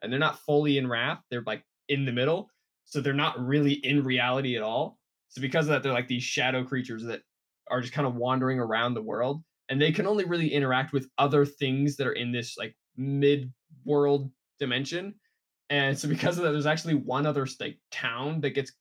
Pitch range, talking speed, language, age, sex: 130-155 Hz, 210 wpm, English, 20-39, male